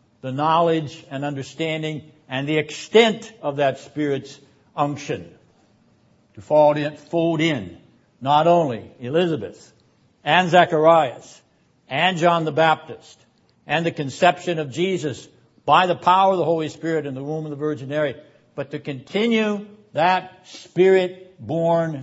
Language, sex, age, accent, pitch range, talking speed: English, male, 60-79, American, 130-165 Hz, 135 wpm